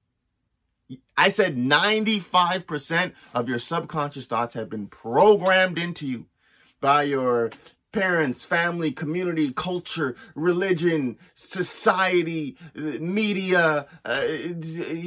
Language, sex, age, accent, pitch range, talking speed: English, male, 30-49, American, 150-205 Hz, 90 wpm